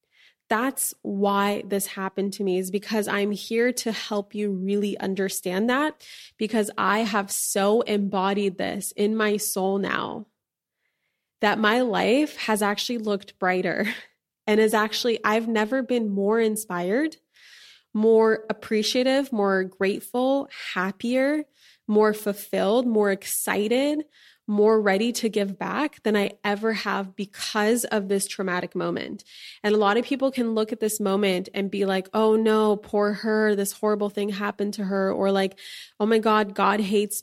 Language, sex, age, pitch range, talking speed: English, female, 20-39, 200-225 Hz, 150 wpm